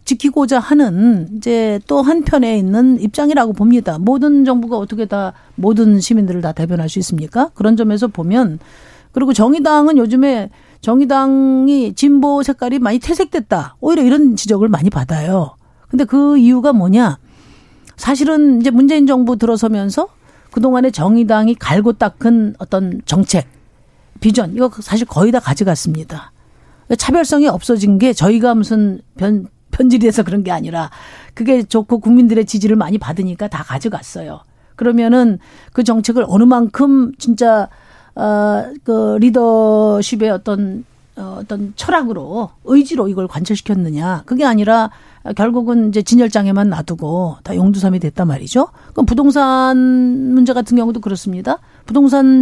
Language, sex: Korean, female